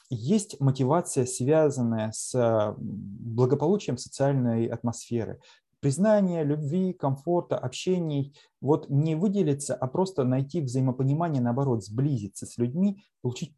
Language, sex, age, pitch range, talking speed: Russian, male, 30-49, 120-145 Hz, 100 wpm